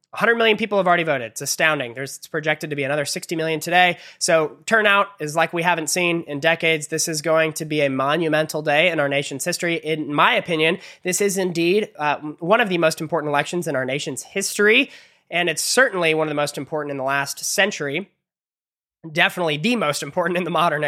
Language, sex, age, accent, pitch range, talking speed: English, male, 20-39, American, 150-195 Hz, 215 wpm